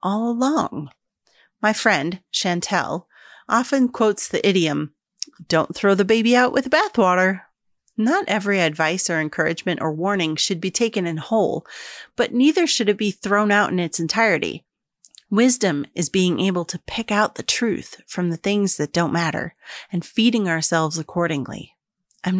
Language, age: English, 30-49